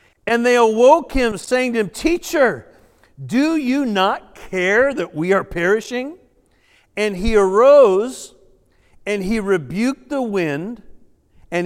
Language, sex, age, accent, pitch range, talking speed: English, male, 50-69, American, 160-230 Hz, 130 wpm